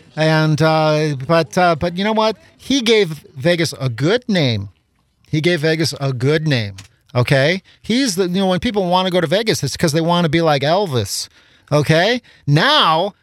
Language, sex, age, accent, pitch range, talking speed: English, male, 40-59, American, 125-170 Hz, 190 wpm